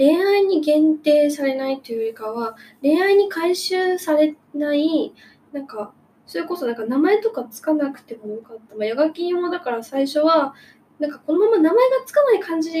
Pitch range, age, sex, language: 215-315 Hz, 10-29, female, Japanese